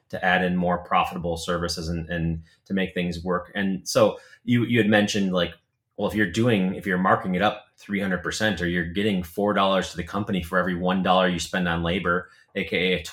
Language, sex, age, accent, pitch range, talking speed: English, male, 30-49, American, 90-110 Hz, 205 wpm